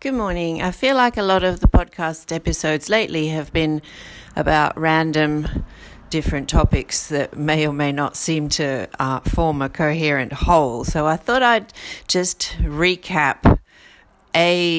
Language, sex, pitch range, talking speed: English, female, 140-175 Hz, 150 wpm